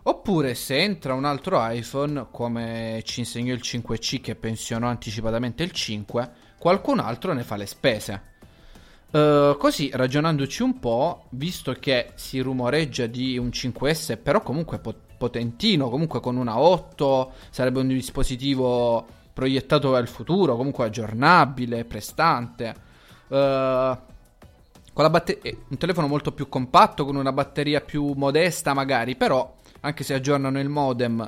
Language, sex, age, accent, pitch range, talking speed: Italian, male, 20-39, native, 120-145 Hz, 140 wpm